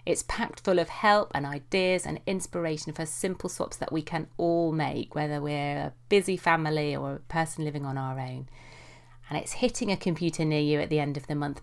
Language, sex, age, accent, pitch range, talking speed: English, female, 30-49, British, 140-170 Hz, 215 wpm